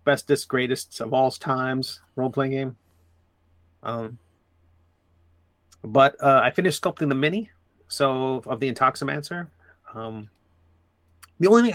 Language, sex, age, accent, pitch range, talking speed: English, male, 30-49, American, 85-145 Hz, 125 wpm